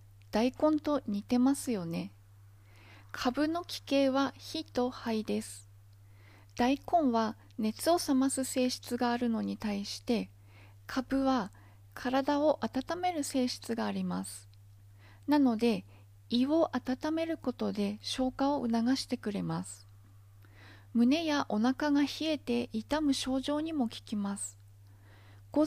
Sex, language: female, Japanese